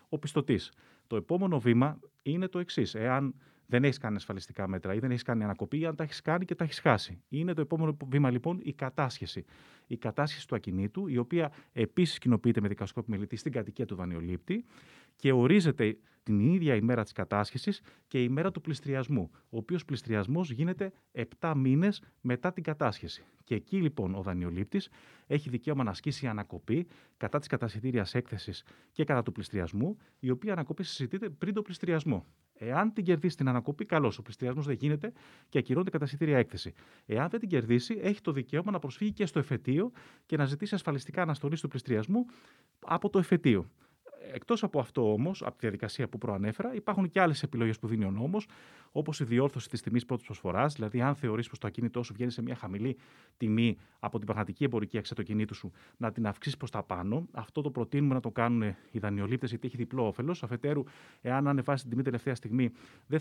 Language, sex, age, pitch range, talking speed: Greek, male, 30-49, 110-155 Hz, 190 wpm